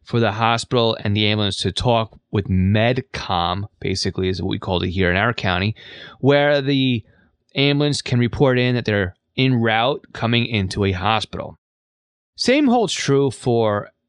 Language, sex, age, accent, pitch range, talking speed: English, male, 20-39, American, 100-125 Hz, 160 wpm